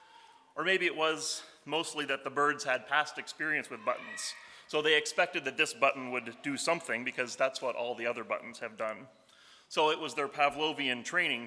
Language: English